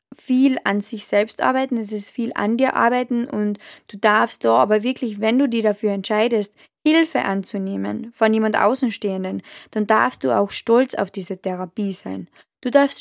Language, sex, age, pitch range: German, female, 20-39, 205-240 Hz